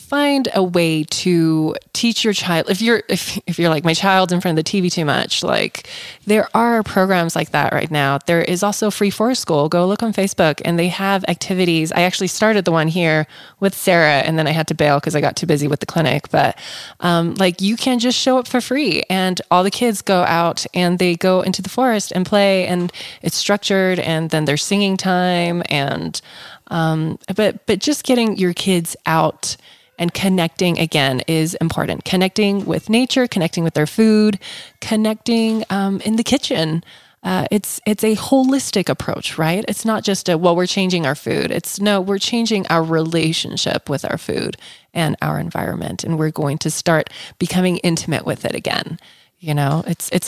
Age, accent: 20-39, American